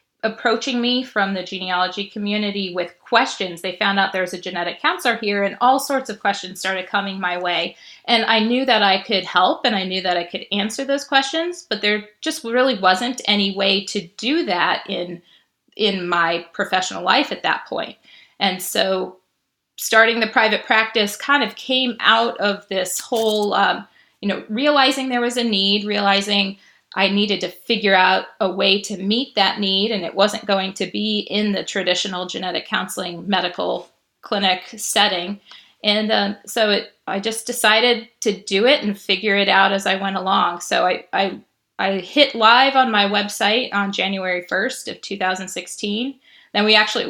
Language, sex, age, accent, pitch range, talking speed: English, female, 30-49, American, 190-225 Hz, 180 wpm